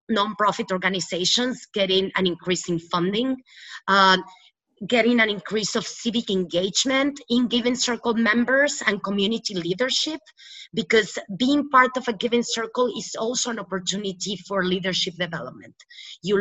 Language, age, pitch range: English, 30-49, 190-230 Hz